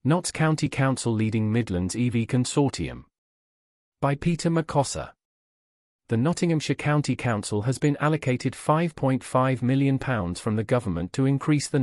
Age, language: 40-59, English